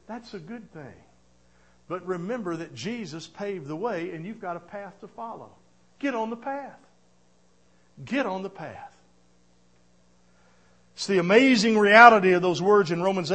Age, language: 50-69, English